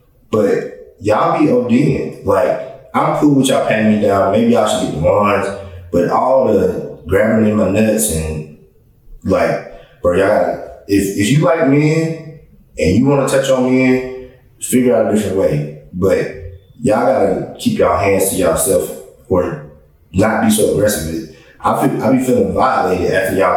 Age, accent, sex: 20-39, American, male